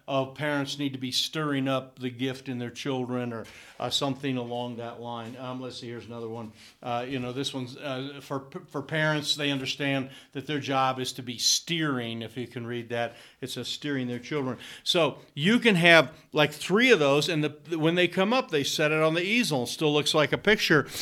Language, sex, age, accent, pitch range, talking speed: English, male, 50-69, American, 130-155 Hz, 215 wpm